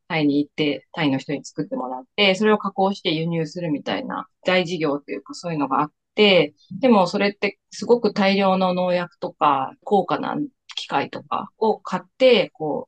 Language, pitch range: Japanese, 150-210 Hz